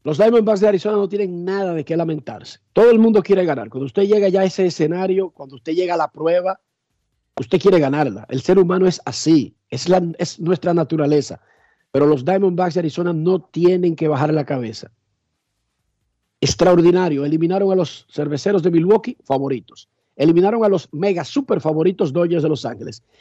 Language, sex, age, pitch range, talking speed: Spanish, male, 50-69, 155-200 Hz, 180 wpm